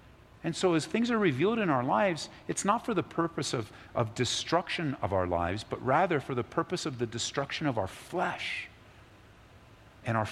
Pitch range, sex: 105-145 Hz, male